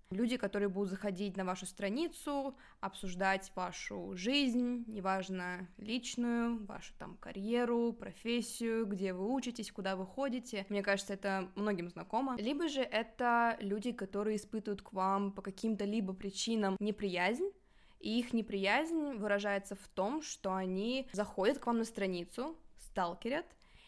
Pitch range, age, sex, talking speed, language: 195-230 Hz, 20-39, female, 135 wpm, Russian